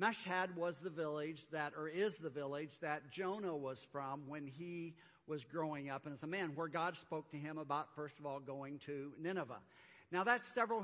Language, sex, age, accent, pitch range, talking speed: English, male, 50-69, American, 155-200 Hz, 205 wpm